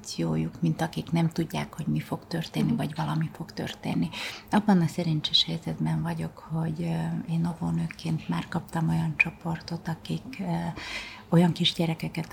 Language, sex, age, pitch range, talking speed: Hungarian, female, 30-49, 120-175 Hz, 140 wpm